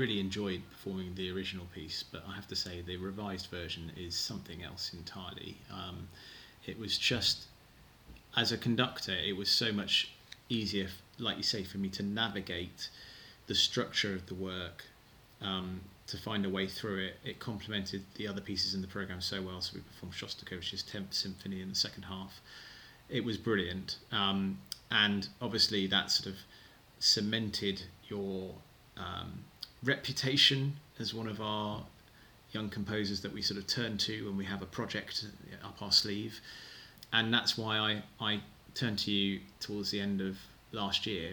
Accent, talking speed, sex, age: British, 170 wpm, male, 30-49